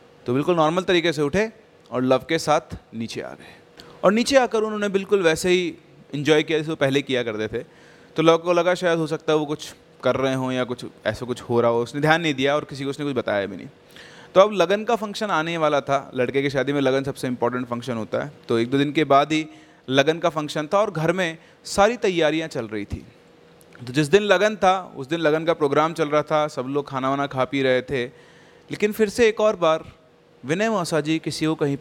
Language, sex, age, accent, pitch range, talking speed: Hindi, male, 30-49, native, 140-195 Hz, 245 wpm